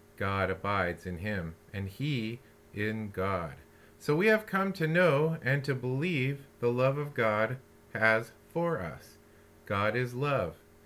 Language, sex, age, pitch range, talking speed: English, male, 40-59, 100-125 Hz, 150 wpm